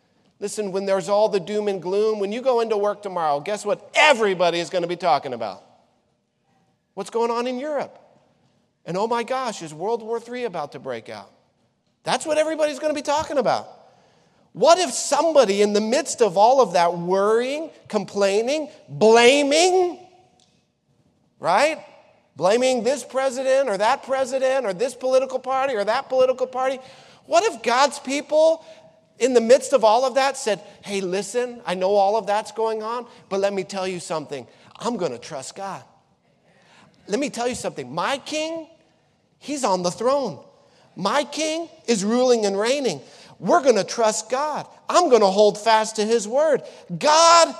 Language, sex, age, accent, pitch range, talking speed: English, male, 40-59, American, 210-295 Hz, 175 wpm